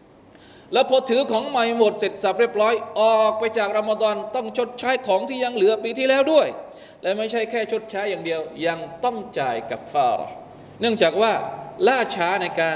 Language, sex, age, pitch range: Thai, male, 20-39, 160-230 Hz